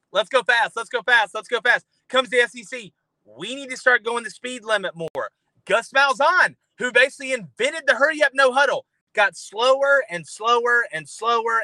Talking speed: 190 wpm